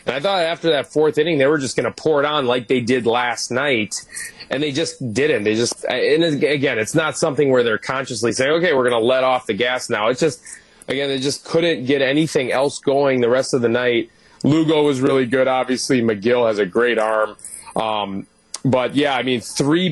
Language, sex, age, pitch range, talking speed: English, male, 30-49, 120-145 Hz, 225 wpm